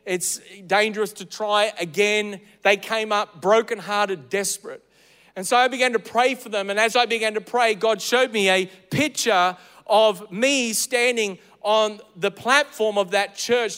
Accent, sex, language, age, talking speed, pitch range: Australian, male, English, 40-59, 165 wpm, 205-245 Hz